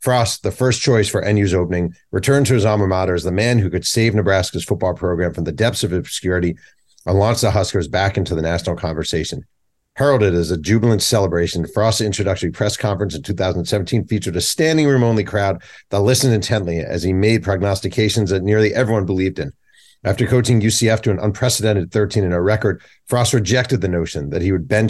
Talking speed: 195 wpm